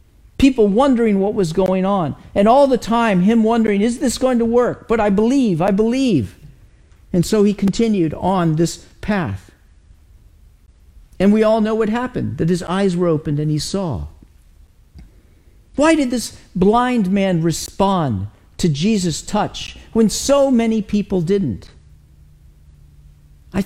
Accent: American